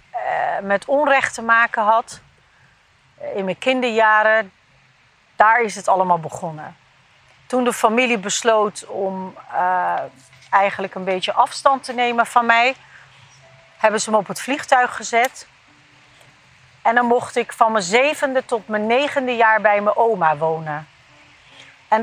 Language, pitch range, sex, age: Dutch, 190-245 Hz, female, 40-59